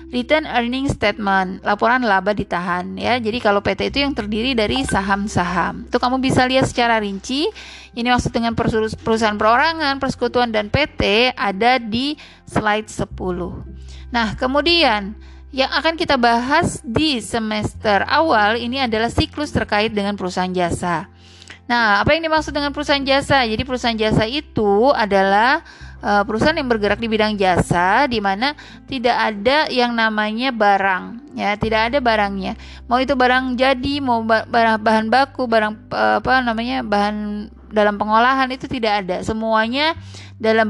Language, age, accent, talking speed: English, 20-39, Indonesian, 145 wpm